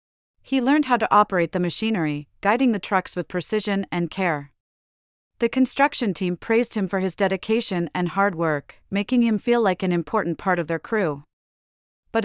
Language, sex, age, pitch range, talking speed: English, female, 40-59, 165-215 Hz, 175 wpm